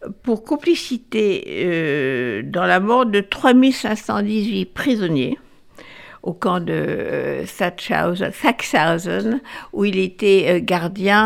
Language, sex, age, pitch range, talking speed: French, female, 60-79, 185-235 Hz, 100 wpm